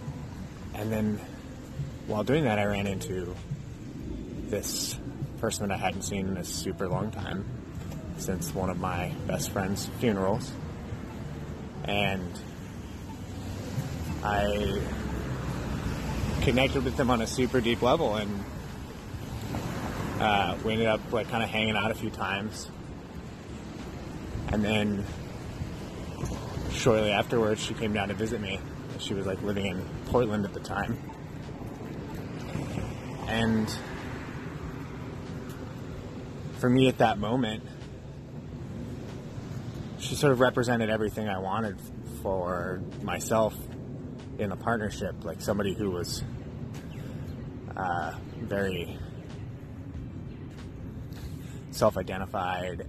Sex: male